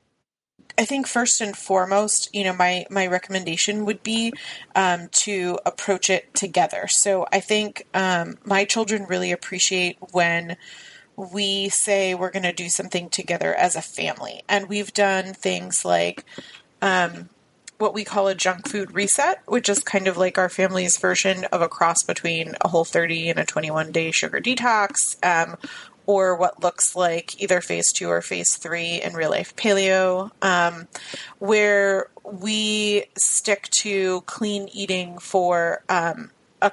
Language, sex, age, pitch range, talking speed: English, female, 30-49, 175-205 Hz, 155 wpm